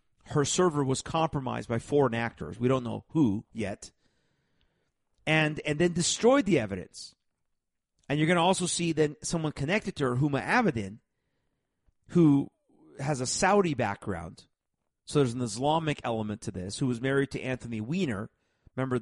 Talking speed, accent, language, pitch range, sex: 160 wpm, American, English, 115-155 Hz, male